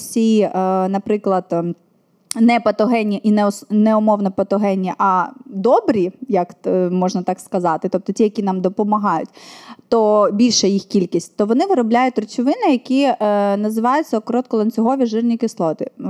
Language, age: Ukrainian, 20-39